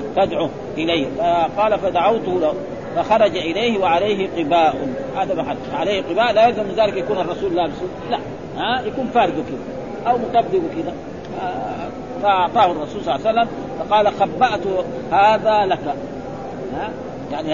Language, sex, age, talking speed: Arabic, male, 40-59, 135 wpm